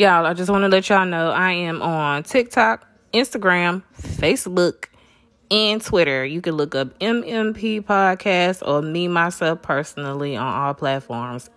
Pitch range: 160-225 Hz